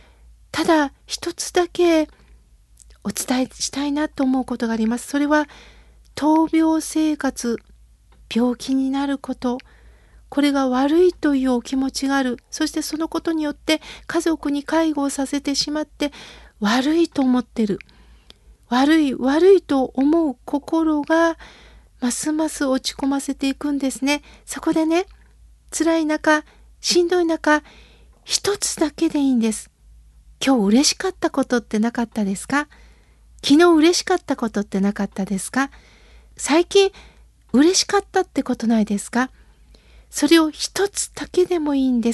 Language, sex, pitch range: Japanese, female, 255-320 Hz